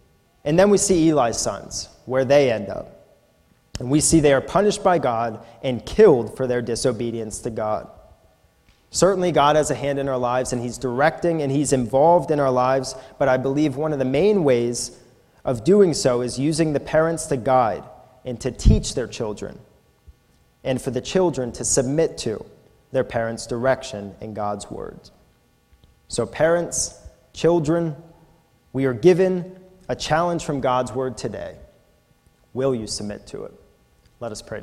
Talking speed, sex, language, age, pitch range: 170 wpm, male, English, 30-49, 125-150 Hz